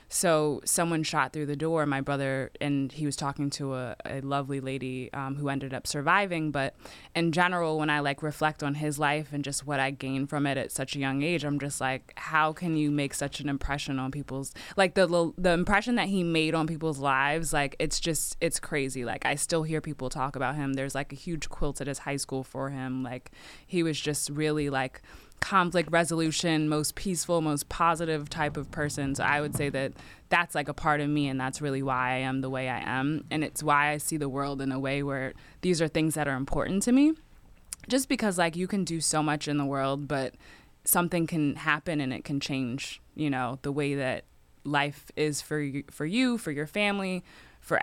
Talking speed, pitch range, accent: 225 wpm, 135-160 Hz, American